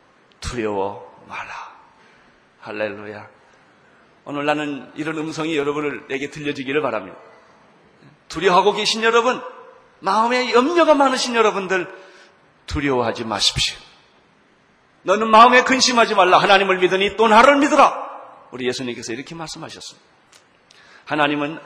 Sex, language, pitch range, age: male, Korean, 155-250 Hz, 40-59